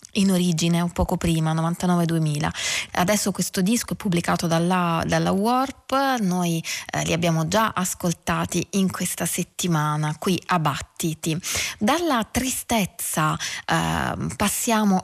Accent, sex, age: native, female, 20-39